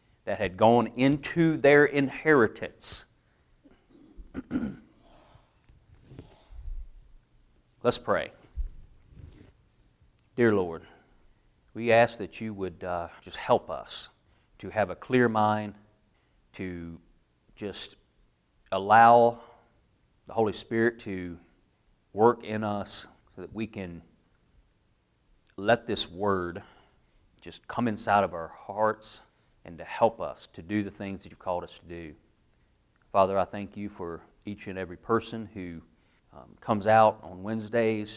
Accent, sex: American, male